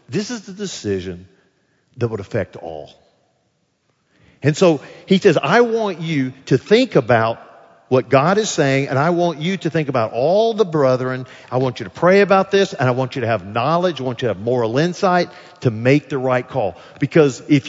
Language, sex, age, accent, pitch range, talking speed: English, male, 50-69, American, 115-175 Hz, 205 wpm